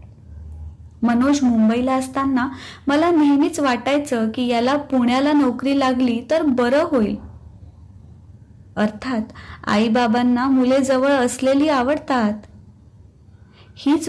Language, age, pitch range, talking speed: Marathi, 20-39, 235-300 Hz, 90 wpm